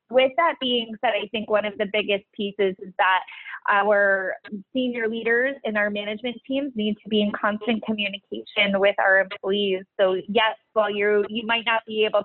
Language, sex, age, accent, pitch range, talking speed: English, female, 20-39, American, 190-220 Hz, 185 wpm